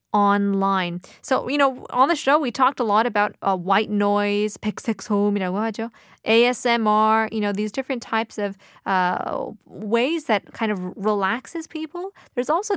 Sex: female